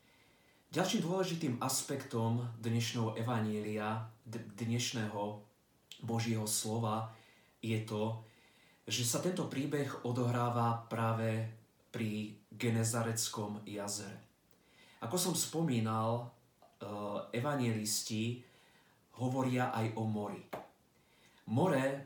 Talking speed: 75 wpm